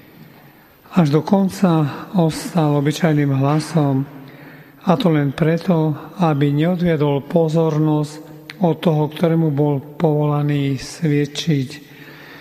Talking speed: 90 wpm